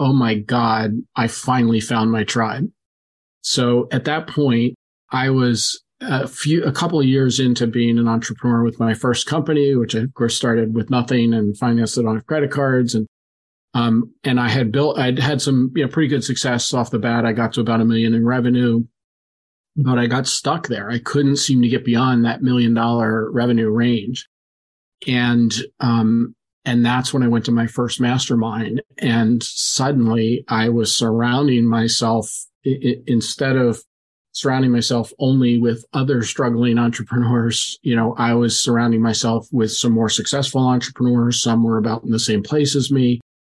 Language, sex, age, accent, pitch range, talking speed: English, male, 40-59, American, 115-130 Hz, 180 wpm